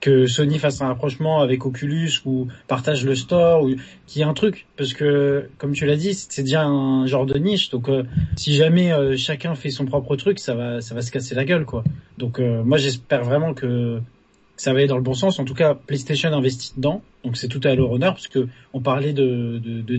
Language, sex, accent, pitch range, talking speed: French, male, French, 125-145 Hz, 240 wpm